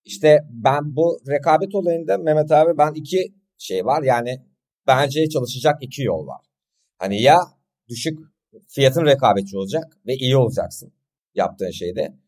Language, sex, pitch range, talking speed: Turkish, male, 120-165 Hz, 135 wpm